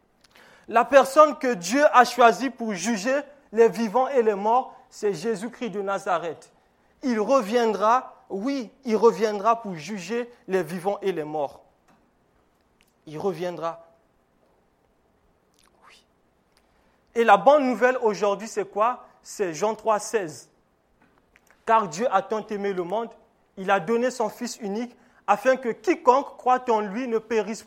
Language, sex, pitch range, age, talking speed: French, male, 190-250 Hz, 30-49, 140 wpm